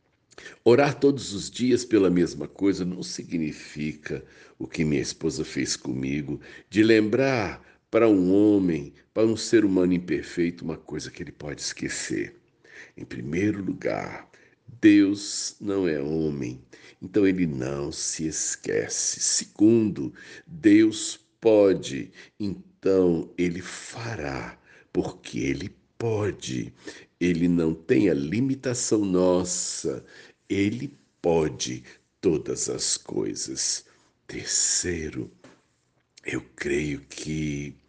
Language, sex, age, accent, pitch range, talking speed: Portuguese, male, 60-79, Brazilian, 75-110 Hz, 105 wpm